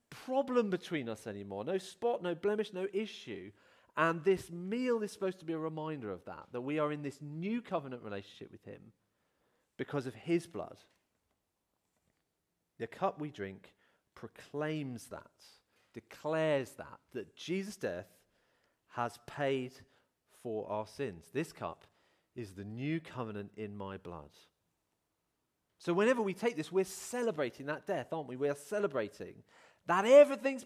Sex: male